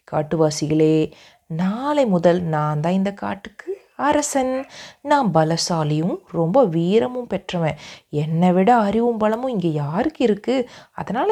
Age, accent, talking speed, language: 30-49, native, 110 wpm, Tamil